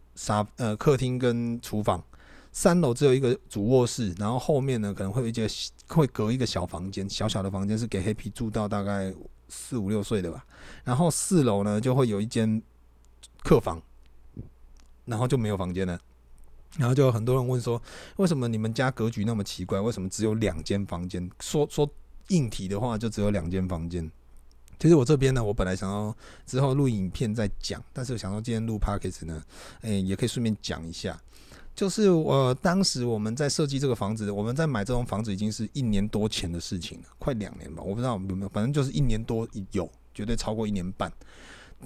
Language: Chinese